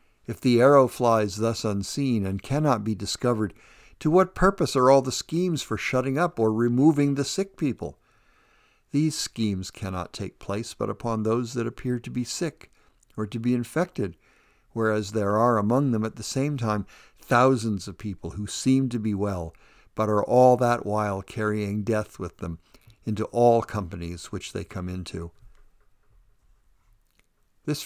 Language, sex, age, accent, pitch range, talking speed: English, male, 60-79, American, 100-125 Hz, 165 wpm